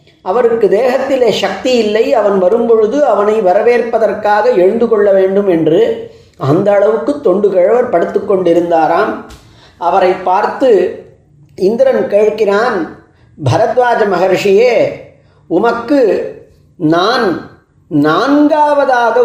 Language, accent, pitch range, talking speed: Tamil, native, 200-280 Hz, 85 wpm